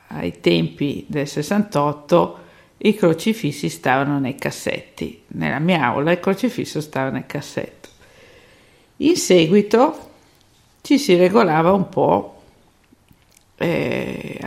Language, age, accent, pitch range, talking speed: Italian, 50-69, native, 150-185 Hz, 105 wpm